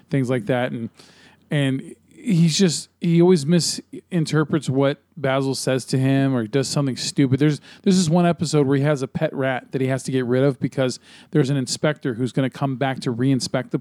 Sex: male